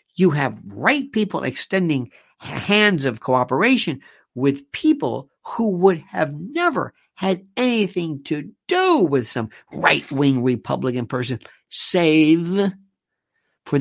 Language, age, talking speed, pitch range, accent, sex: English, 50-69, 115 wpm, 130-195 Hz, American, male